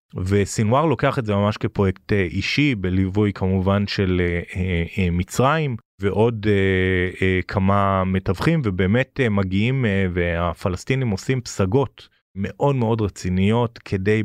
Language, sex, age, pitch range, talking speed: Hebrew, male, 30-49, 95-120 Hz, 130 wpm